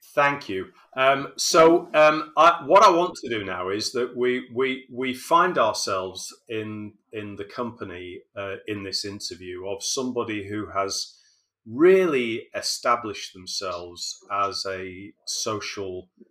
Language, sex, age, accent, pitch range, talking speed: English, male, 30-49, British, 100-120 Hz, 135 wpm